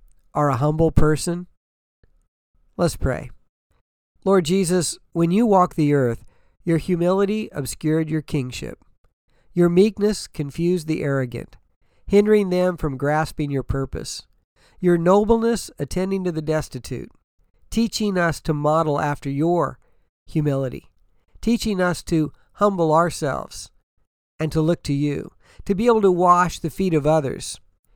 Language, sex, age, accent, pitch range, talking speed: English, male, 50-69, American, 140-180 Hz, 130 wpm